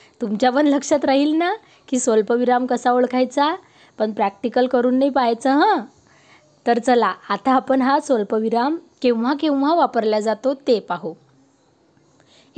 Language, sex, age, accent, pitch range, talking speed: Marathi, female, 20-39, native, 220-270 Hz, 135 wpm